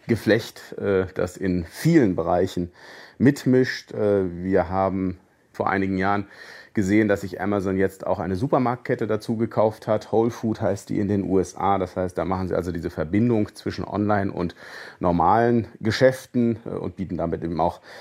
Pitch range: 95-115 Hz